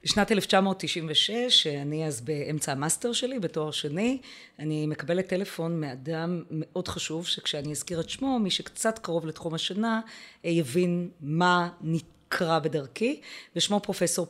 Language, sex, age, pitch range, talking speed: Hebrew, female, 30-49, 150-195 Hz, 145 wpm